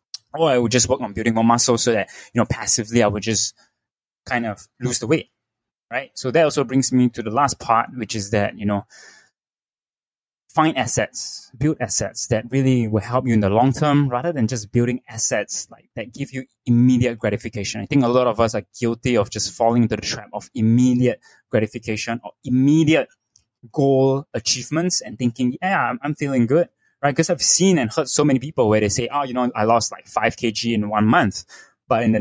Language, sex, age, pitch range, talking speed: English, male, 20-39, 110-135 Hz, 210 wpm